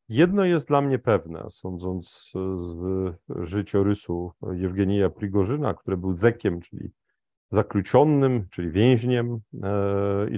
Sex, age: male, 40-59